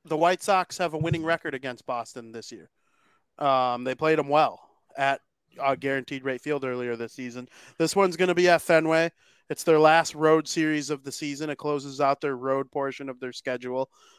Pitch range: 125-155 Hz